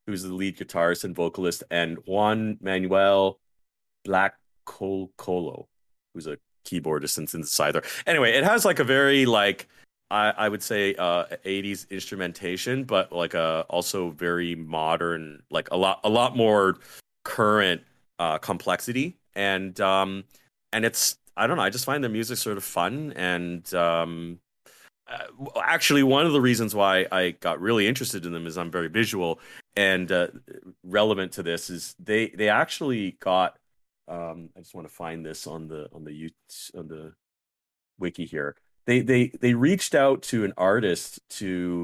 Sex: male